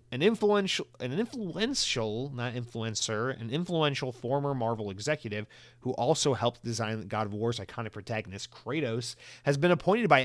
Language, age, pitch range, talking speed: English, 30-49, 110-140 Hz, 150 wpm